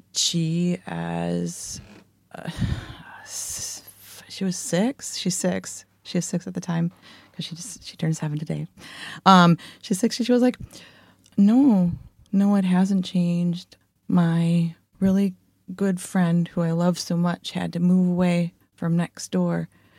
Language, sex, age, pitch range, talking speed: English, female, 30-49, 145-180 Hz, 145 wpm